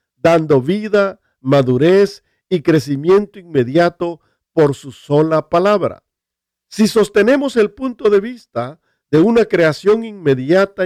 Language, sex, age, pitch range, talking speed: Spanish, male, 50-69, 150-200 Hz, 110 wpm